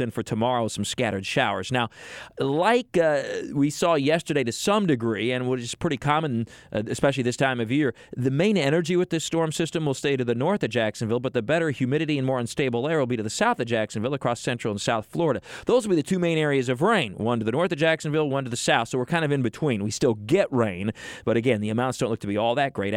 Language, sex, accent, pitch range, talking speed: English, male, American, 115-145 Hz, 260 wpm